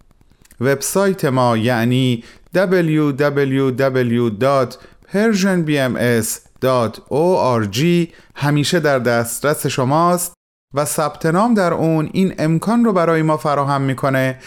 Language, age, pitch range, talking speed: Persian, 30-49, 120-170 Hz, 80 wpm